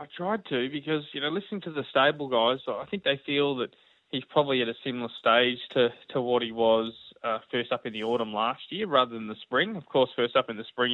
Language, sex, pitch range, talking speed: English, male, 115-135 Hz, 250 wpm